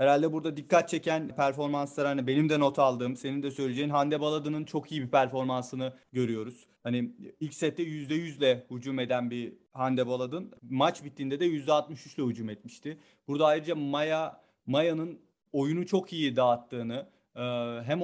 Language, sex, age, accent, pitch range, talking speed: Turkish, male, 40-59, native, 135-160 Hz, 145 wpm